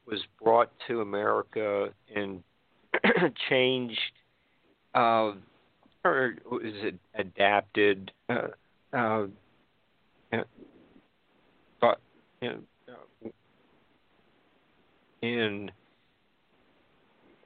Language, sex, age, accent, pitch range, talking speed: English, male, 50-69, American, 105-115 Hz, 60 wpm